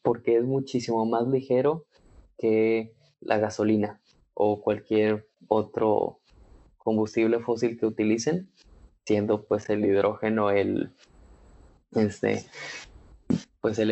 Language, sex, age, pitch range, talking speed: Spanish, male, 20-39, 105-115 Hz, 90 wpm